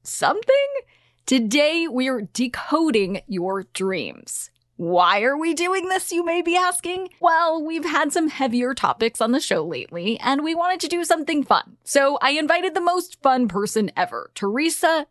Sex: female